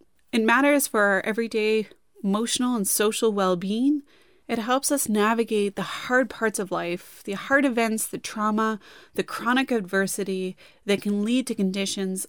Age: 30-49